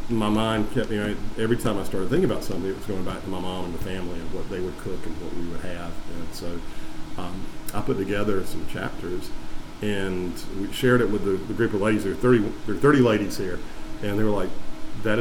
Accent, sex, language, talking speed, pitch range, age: American, male, English, 240 wpm, 100-120 Hz, 50-69